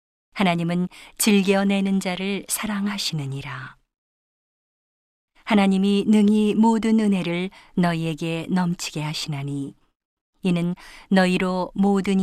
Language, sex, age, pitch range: Korean, female, 40-59, 170-200 Hz